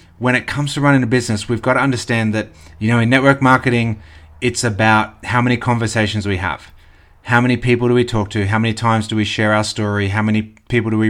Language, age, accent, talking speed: English, 30-49, Australian, 240 wpm